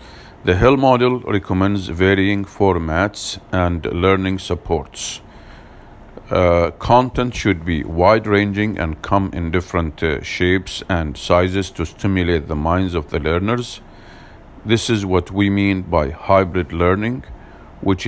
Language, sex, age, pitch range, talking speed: English, male, 50-69, 90-105 Hz, 125 wpm